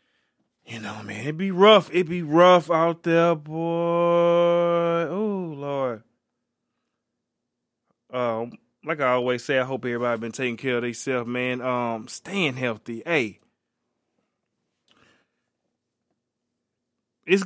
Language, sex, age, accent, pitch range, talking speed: English, male, 20-39, American, 120-165 Hz, 115 wpm